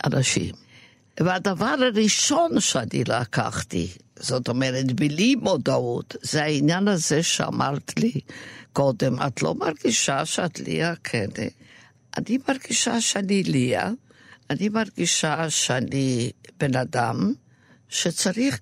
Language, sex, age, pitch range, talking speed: Hebrew, female, 60-79, 135-200 Hz, 100 wpm